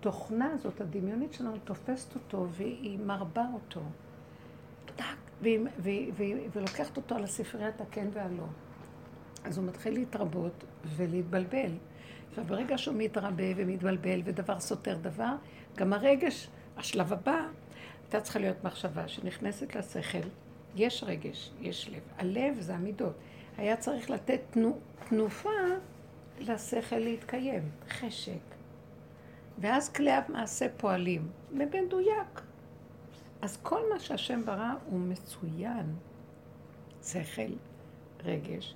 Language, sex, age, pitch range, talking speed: Hebrew, female, 60-79, 185-255 Hz, 110 wpm